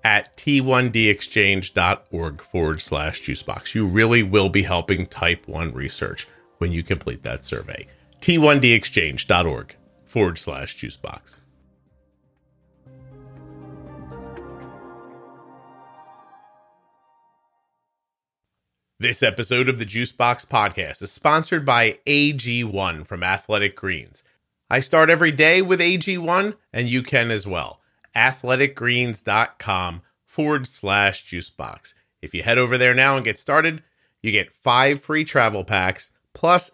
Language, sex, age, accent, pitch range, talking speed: English, male, 40-59, American, 95-140 Hz, 110 wpm